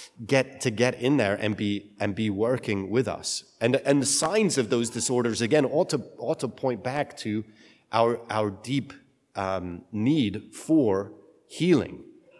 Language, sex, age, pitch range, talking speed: English, male, 40-59, 110-135 Hz, 165 wpm